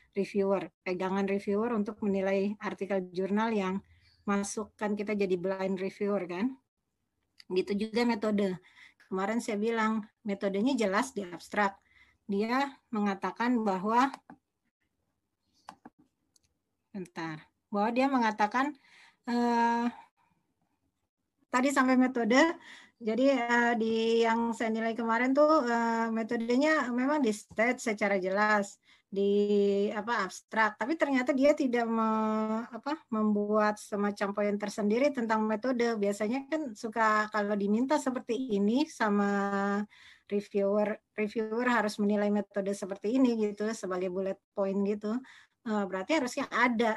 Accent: native